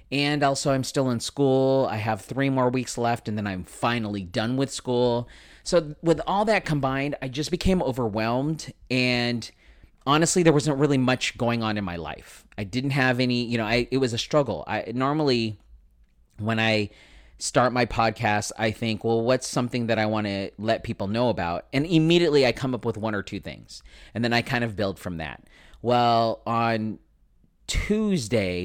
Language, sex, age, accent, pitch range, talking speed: English, male, 30-49, American, 110-140 Hz, 190 wpm